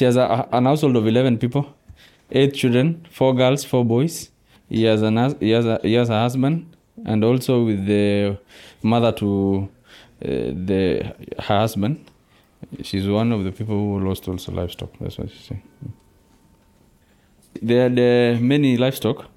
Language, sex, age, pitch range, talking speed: English, male, 20-39, 100-120 Hz, 160 wpm